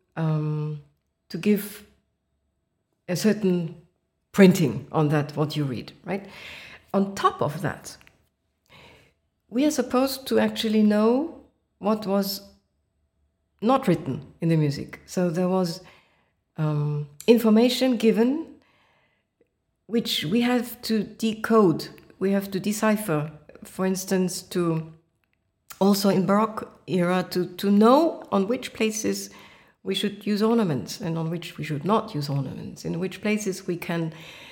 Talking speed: 130 wpm